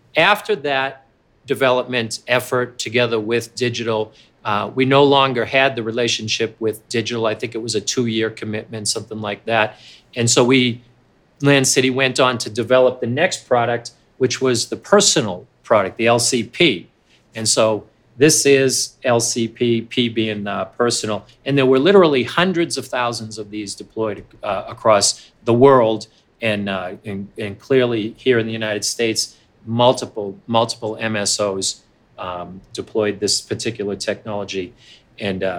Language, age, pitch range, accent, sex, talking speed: English, 40-59, 110-130 Hz, American, male, 150 wpm